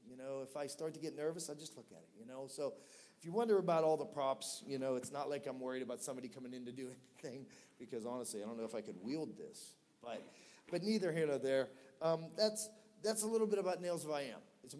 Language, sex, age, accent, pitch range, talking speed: English, male, 40-59, American, 135-165 Hz, 270 wpm